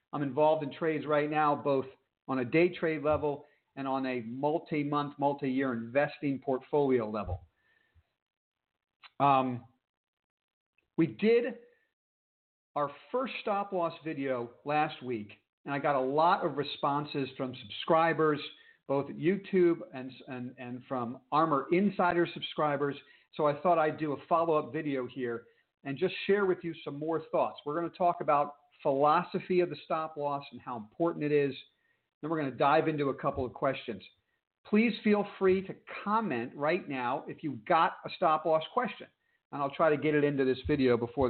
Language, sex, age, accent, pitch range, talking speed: English, male, 50-69, American, 130-170 Hz, 165 wpm